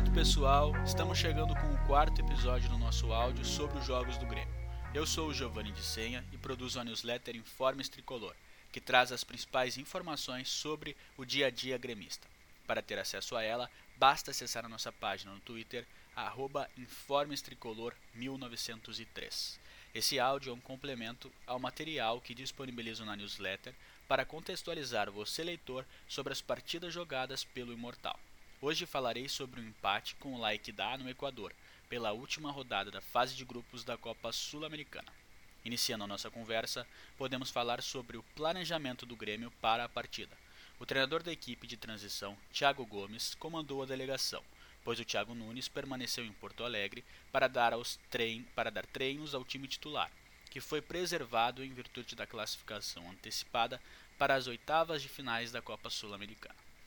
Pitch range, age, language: 115-135 Hz, 20-39, Portuguese